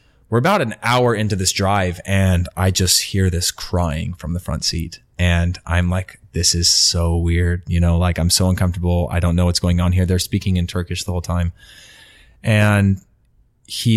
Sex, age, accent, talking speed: male, 30-49, American, 200 wpm